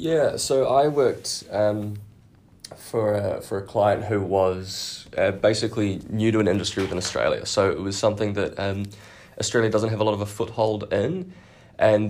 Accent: Australian